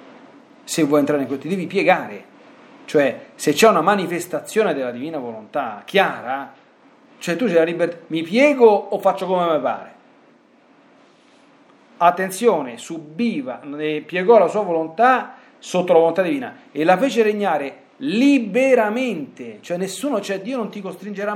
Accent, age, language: native, 40-59, Italian